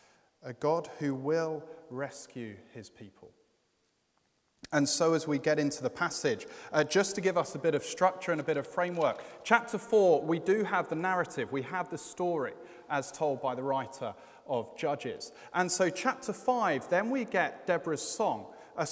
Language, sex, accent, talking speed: English, male, British, 180 wpm